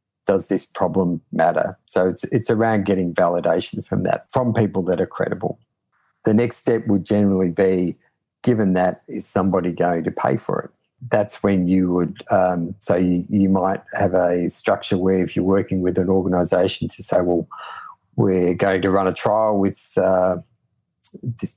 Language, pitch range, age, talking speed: English, 90-105 Hz, 50-69, 180 wpm